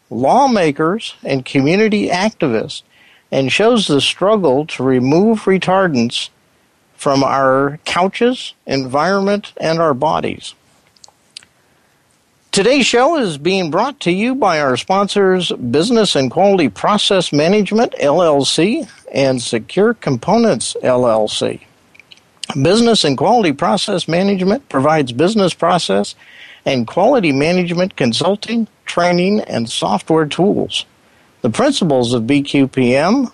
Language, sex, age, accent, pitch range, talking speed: English, male, 50-69, American, 140-200 Hz, 105 wpm